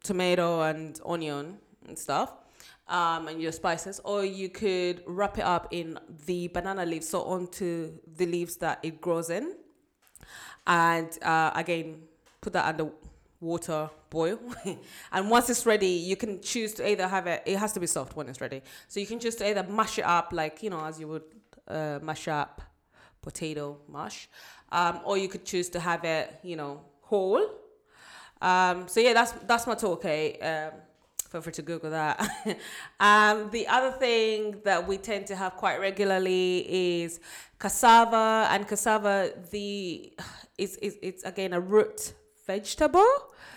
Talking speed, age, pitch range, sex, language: 165 wpm, 20-39, 165-205 Hz, female, English